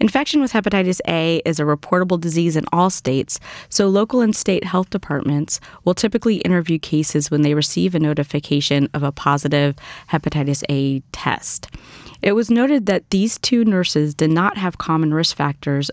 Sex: female